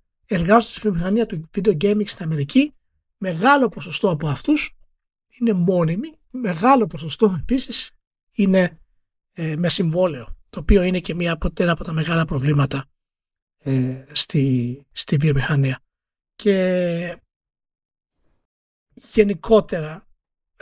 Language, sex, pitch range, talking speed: Greek, male, 160-225 Hz, 100 wpm